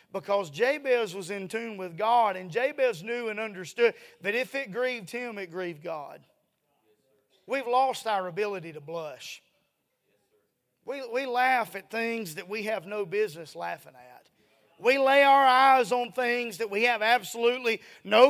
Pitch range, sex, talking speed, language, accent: 155-240 Hz, male, 160 wpm, English, American